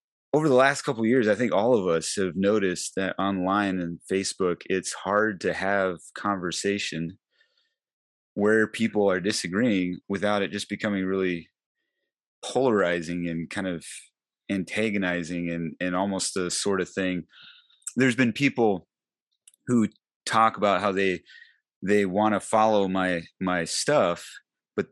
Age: 30-49